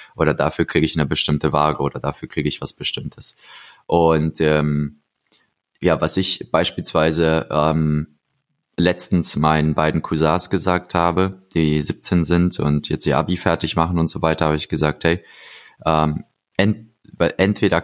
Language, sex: German, male